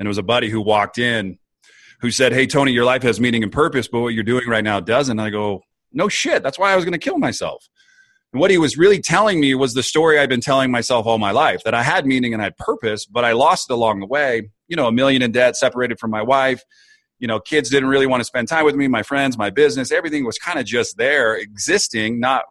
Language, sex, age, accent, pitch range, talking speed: English, male, 30-49, American, 110-140 Hz, 275 wpm